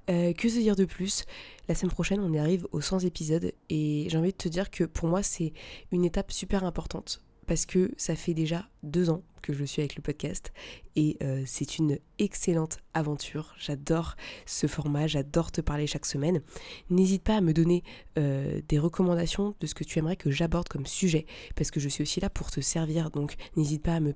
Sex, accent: female, French